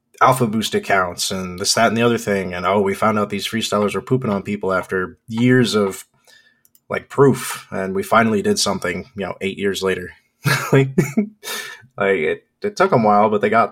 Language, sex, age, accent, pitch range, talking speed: English, male, 20-39, American, 95-125 Hz, 205 wpm